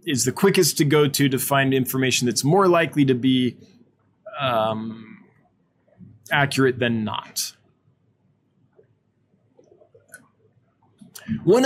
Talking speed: 100 wpm